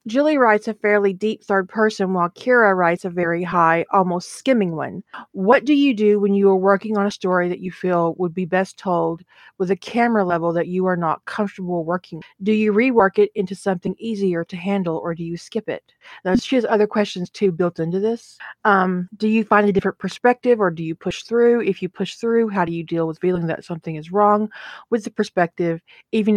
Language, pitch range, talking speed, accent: English, 180-225 Hz, 220 wpm, American